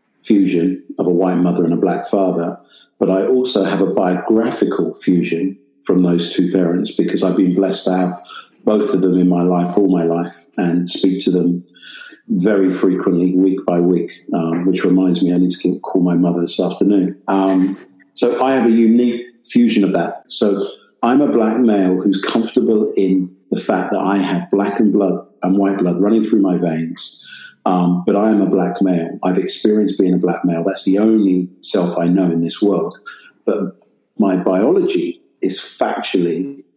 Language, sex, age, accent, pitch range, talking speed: English, male, 50-69, British, 90-105 Hz, 185 wpm